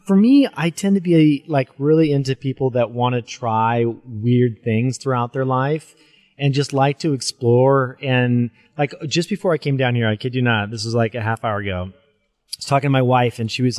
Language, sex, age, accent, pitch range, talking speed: English, male, 30-49, American, 120-150 Hz, 225 wpm